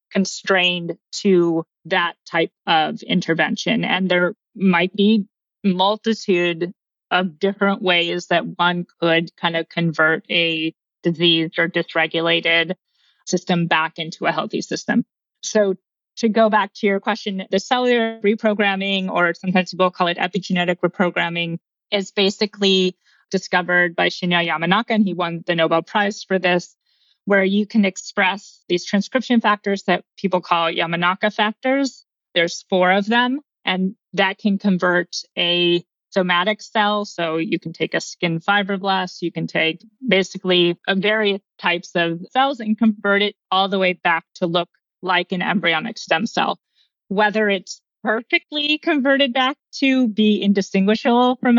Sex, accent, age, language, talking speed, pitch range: female, American, 30-49, English, 145 wpm, 175-210 Hz